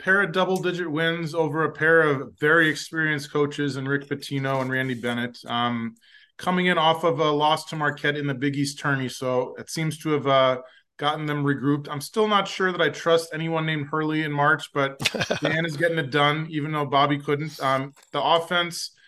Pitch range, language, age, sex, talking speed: 140-155 Hz, English, 20-39, male, 210 wpm